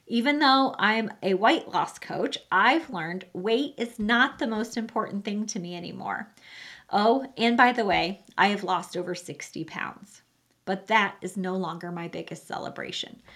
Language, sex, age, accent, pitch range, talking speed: English, female, 30-49, American, 195-265 Hz, 170 wpm